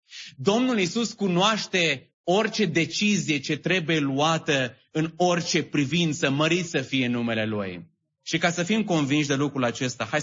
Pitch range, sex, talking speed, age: 105-155 Hz, male, 155 wpm, 30-49